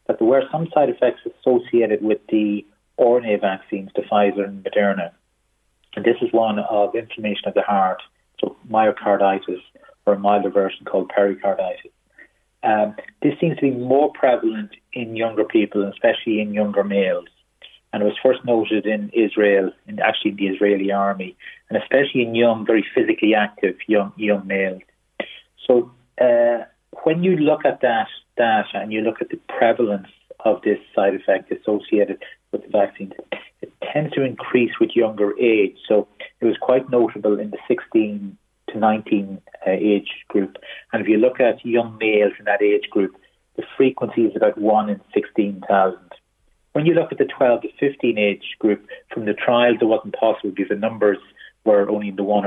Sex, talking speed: male, 175 wpm